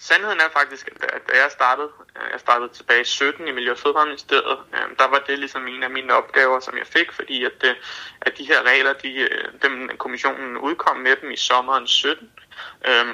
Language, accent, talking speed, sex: Danish, native, 185 wpm, male